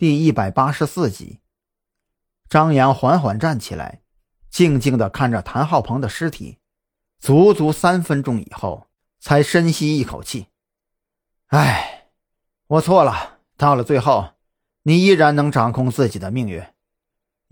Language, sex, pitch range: Chinese, male, 115-155 Hz